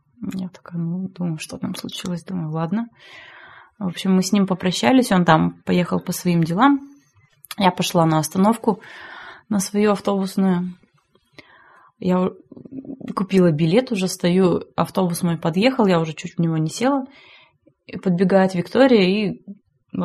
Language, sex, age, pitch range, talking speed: Russian, female, 20-39, 170-220 Hz, 140 wpm